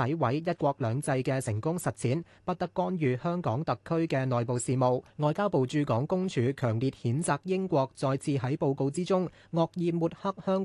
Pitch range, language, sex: 125-175 Hz, Chinese, male